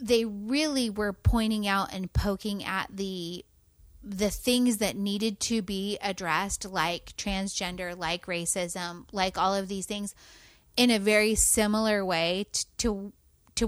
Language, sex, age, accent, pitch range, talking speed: English, female, 30-49, American, 180-225 Hz, 140 wpm